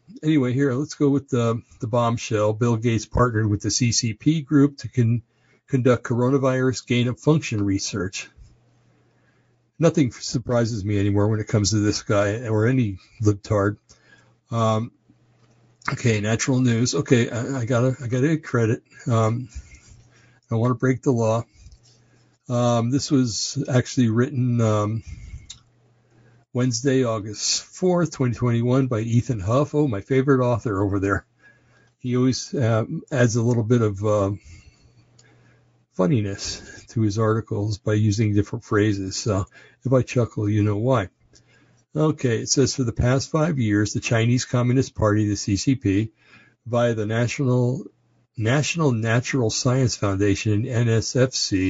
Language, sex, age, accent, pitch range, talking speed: English, male, 60-79, American, 110-130 Hz, 135 wpm